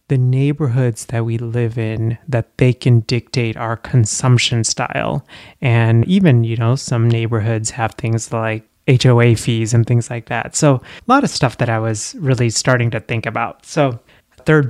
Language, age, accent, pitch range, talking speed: English, 30-49, American, 115-145 Hz, 175 wpm